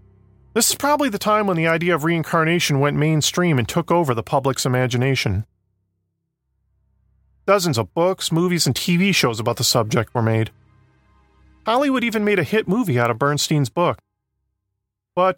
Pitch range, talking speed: 115-175 Hz, 160 wpm